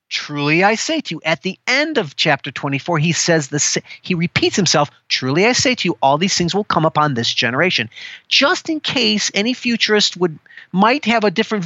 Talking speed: 205 wpm